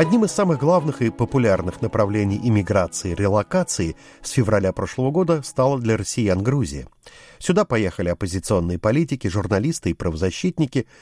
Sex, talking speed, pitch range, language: male, 130 wpm, 100-140 Hz, Russian